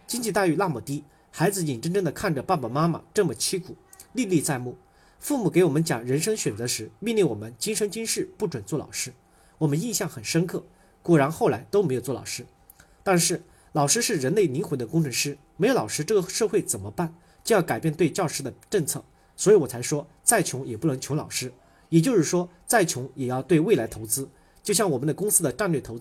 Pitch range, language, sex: 125-180 Hz, Chinese, male